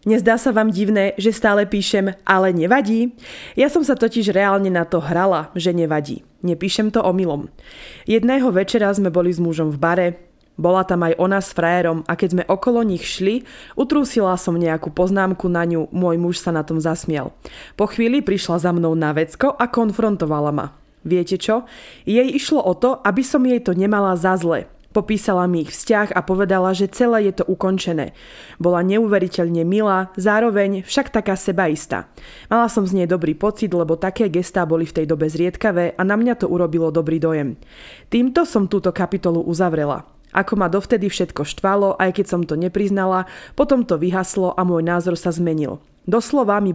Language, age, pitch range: Slovak, 20-39, 170-215 Hz